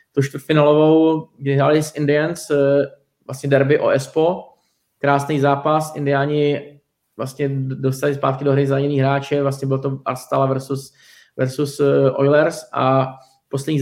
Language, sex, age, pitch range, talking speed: Czech, male, 20-39, 135-145 Hz, 125 wpm